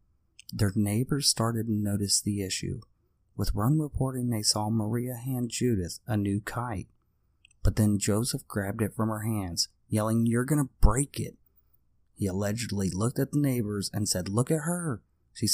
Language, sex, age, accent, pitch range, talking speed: English, male, 30-49, American, 95-120 Hz, 165 wpm